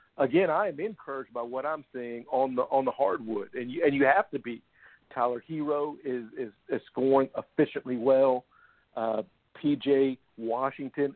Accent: American